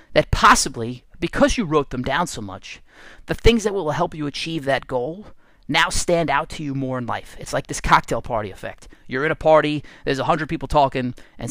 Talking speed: 215 wpm